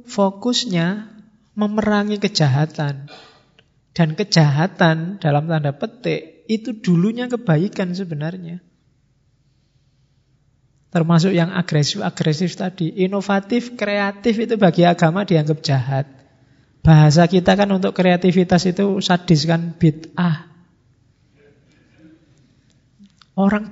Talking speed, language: 85 wpm, Indonesian